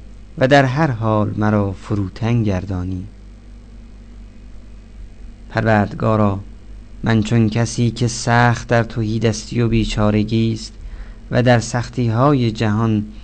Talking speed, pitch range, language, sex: 110 wpm, 105-115 Hz, Persian, male